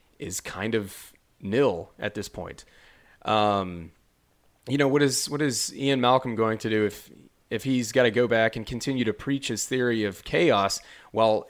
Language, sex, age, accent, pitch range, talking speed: English, male, 30-49, American, 110-135 Hz, 185 wpm